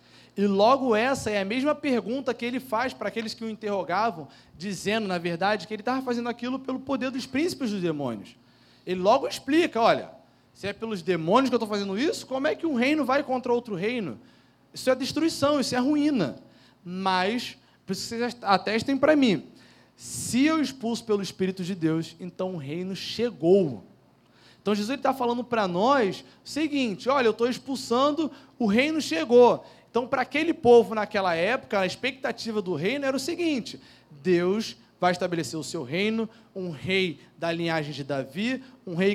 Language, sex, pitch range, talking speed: Portuguese, male, 185-260 Hz, 180 wpm